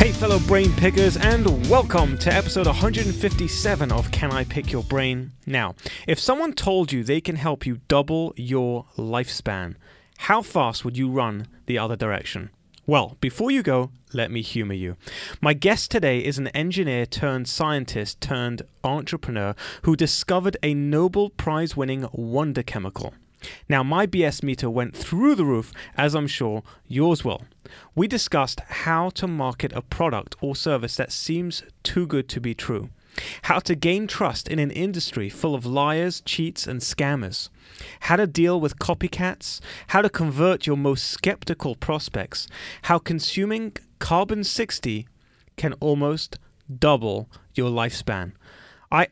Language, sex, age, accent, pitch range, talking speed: English, male, 30-49, British, 120-165 Hz, 155 wpm